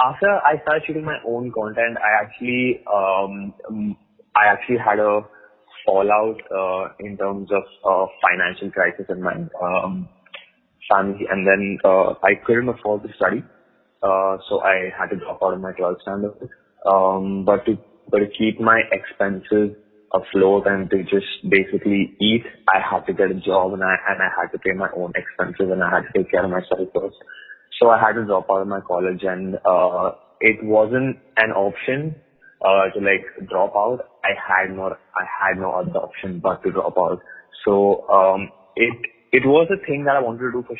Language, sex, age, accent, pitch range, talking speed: English, male, 20-39, Indian, 95-115 Hz, 190 wpm